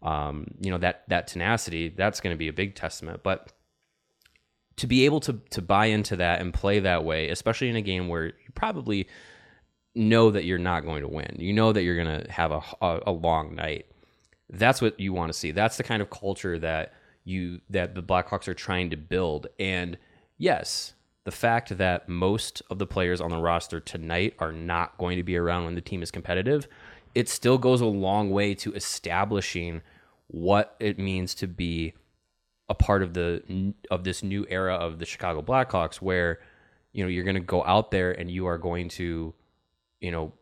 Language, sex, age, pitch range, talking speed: English, male, 20-39, 85-100 Hz, 205 wpm